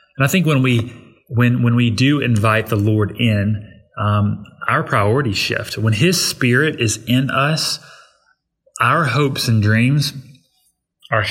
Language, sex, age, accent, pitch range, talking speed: English, male, 30-49, American, 105-120 Hz, 150 wpm